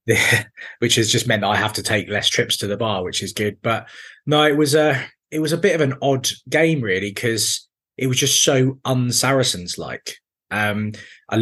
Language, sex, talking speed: English, male, 210 wpm